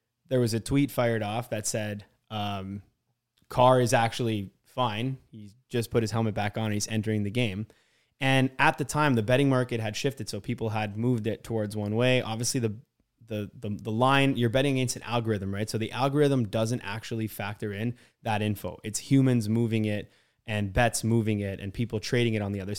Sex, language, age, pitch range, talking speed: male, English, 20-39, 110-125 Hz, 205 wpm